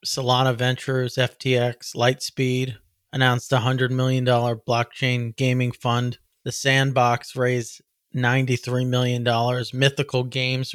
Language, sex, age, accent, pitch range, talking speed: English, male, 30-49, American, 120-140 Hz, 100 wpm